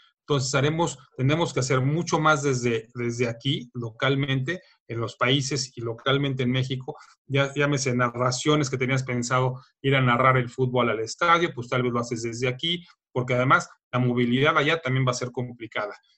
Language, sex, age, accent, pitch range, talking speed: Spanish, male, 30-49, Mexican, 125-155 Hz, 180 wpm